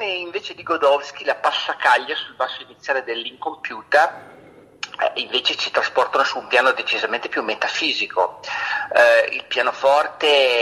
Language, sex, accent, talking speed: Italian, male, native, 125 wpm